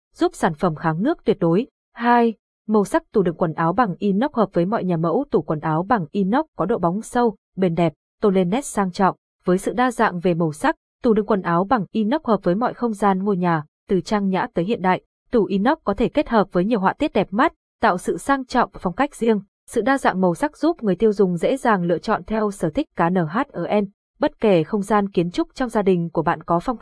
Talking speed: 255 wpm